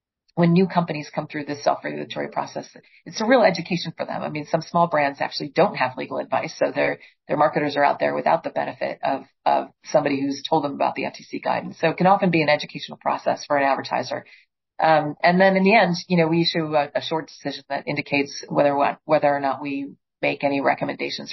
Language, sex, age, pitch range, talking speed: English, female, 40-59, 145-175 Hz, 225 wpm